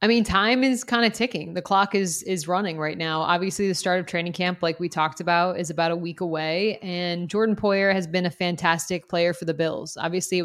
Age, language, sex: 20-39, English, female